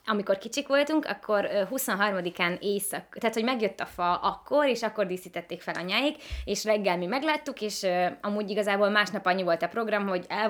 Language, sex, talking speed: Hungarian, female, 175 wpm